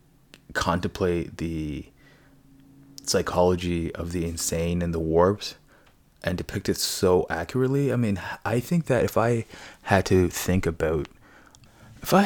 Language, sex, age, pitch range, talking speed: English, male, 20-39, 85-105 Hz, 130 wpm